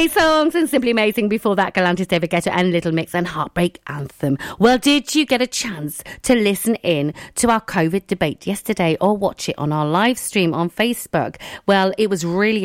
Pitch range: 180-250 Hz